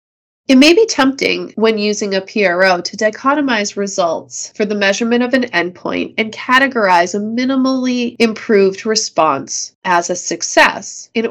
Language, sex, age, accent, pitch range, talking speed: English, female, 30-49, American, 205-265 Hz, 145 wpm